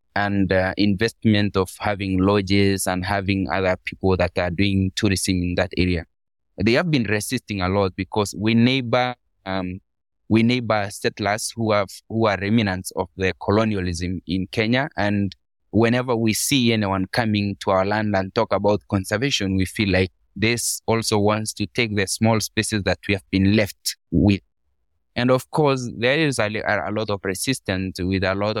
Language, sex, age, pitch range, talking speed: English, male, 20-39, 95-115 Hz, 170 wpm